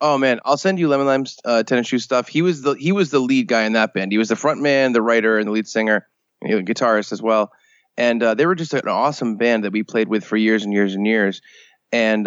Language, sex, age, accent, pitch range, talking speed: English, male, 20-39, American, 105-130 Hz, 285 wpm